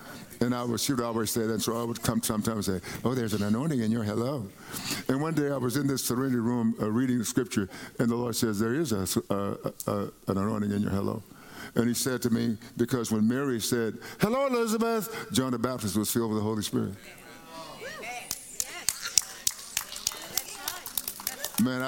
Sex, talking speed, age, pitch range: male, 195 wpm, 60-79, 115-140 Hz